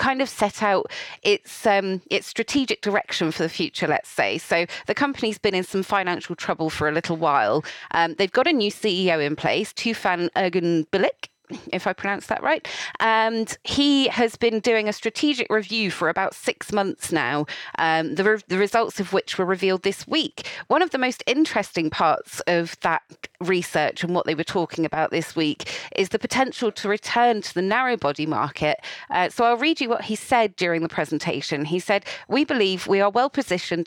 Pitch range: 175-230 Hz